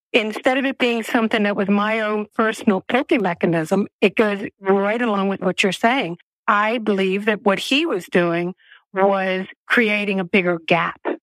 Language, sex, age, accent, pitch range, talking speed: English, female, 50-69, American, 190-230 Hz, 170 wpm